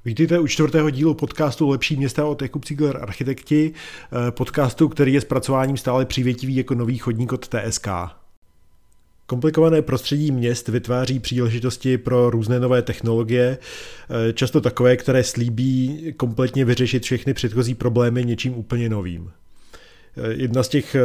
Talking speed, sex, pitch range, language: 135 wpm, male, 120-135 Hz, Czech